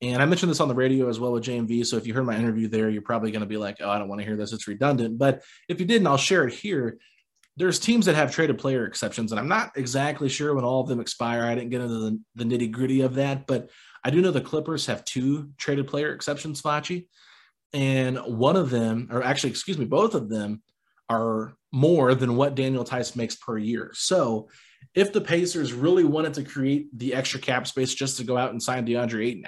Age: 30-49